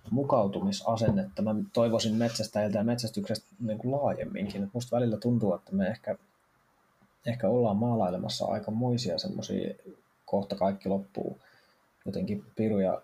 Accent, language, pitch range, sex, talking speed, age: native, Finnish, 100-120 Hz, male, 110 wpm, 20-39